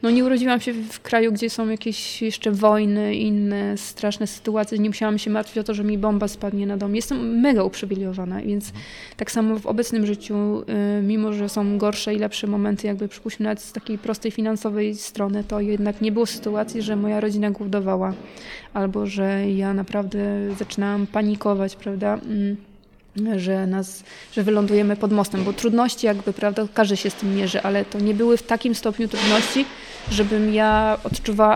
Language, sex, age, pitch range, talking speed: Polish, female, 20-39, 205-230 Hz, 175 wpm